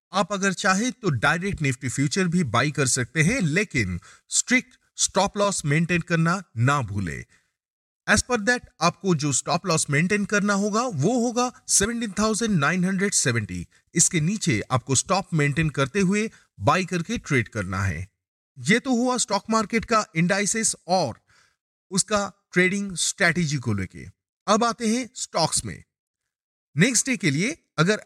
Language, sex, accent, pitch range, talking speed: Hindi, male, native, 145-210 Hz, 130 wpm